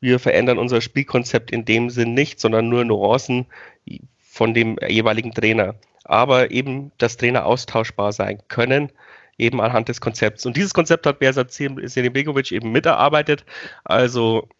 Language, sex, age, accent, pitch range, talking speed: German, male, 30-49, German, 120-150 Hz, 145 wpm